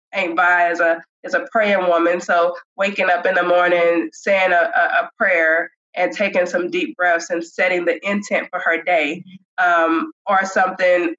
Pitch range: 175-195 Hz